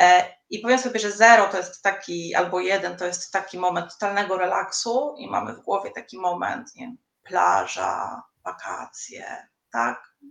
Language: Polish